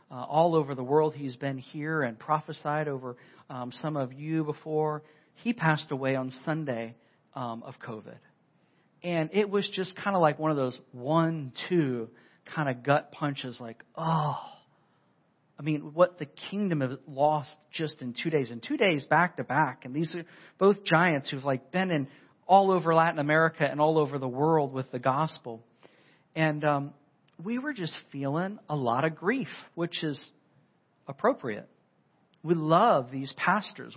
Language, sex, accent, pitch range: English, male, American, 135-170 Hz